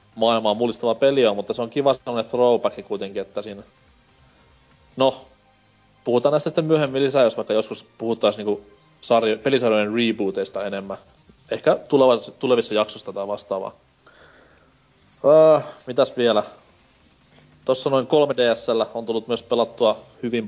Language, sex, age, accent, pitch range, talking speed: Finnish, male, 30-49, native, 105-130 Hz, 135 wpm